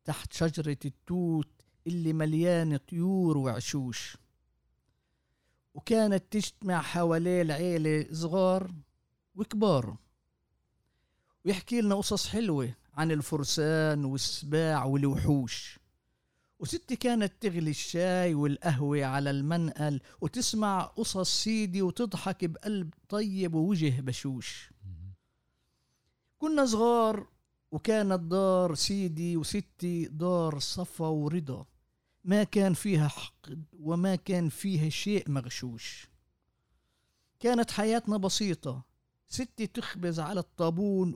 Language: Arabic